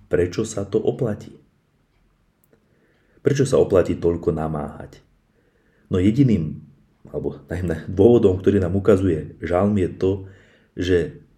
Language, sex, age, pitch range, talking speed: Slovak, male, 30-49, 85-105 Hz, 110 wpm